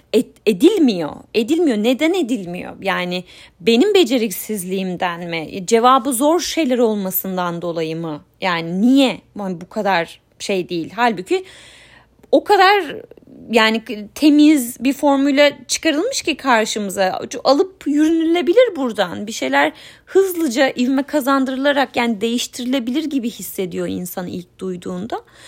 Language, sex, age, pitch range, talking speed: Turkish, female, 30-49, 195-270 Hz, 105 wpm